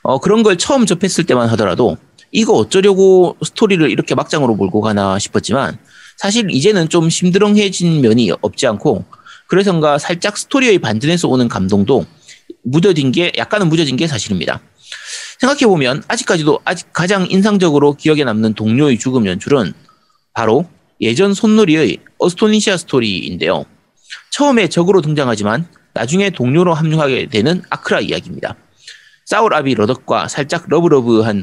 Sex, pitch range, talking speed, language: male, 125-195 Hz, 120 wpm, English